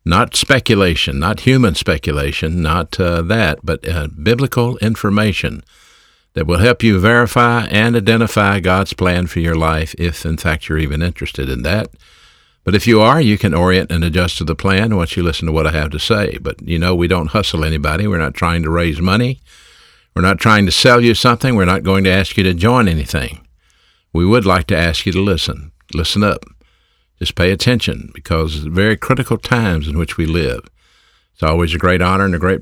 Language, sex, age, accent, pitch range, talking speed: English, male, 60-79, American, 80-105 Hz, 205 wpm